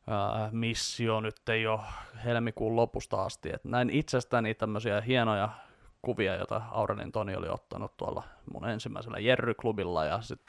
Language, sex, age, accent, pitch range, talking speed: Finnish, male, 20-39, native, 110-130 Hz, 145 wpm